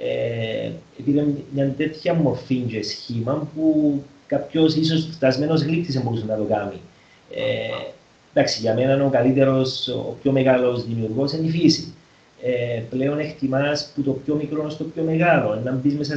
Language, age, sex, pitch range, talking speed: Greek, 40-59, male, 130-165 Hz, 150 wpm